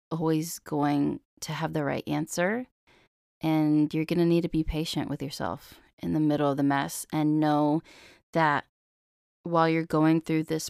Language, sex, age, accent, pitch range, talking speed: English, female, 20-39, American, 155-190 Hz, 175 wpm